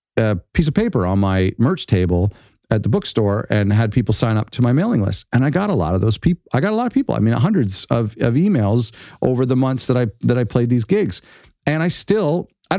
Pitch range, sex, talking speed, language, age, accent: 100-145 Hz, male, 255 wpm, English, 40-59, American